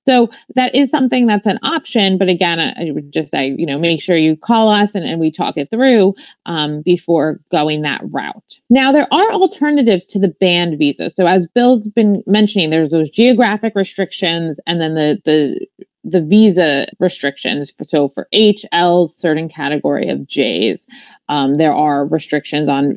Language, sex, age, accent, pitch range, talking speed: English, female, 30-49, American, 165-230 Hz, 175 wpm